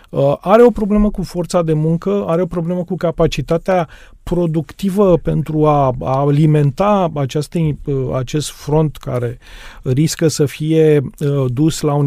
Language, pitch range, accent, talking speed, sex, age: Romanian, 145-185 Hz, native, 125 wpm, male, 30-49